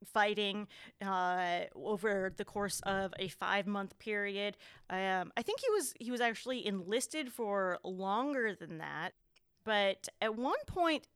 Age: 30-49